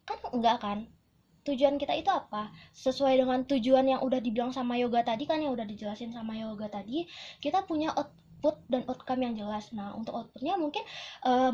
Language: Indonesian